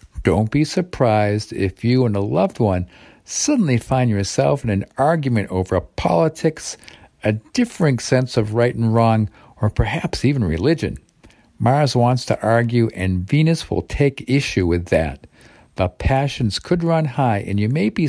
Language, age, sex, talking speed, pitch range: English, 50-69, male, 165 wpm, 100-140 Hz